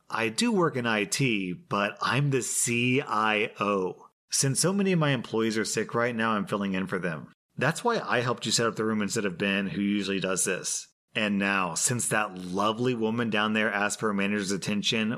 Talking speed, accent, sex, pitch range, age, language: 210 wpm, American, male, 100-125 Hz, 30-49, English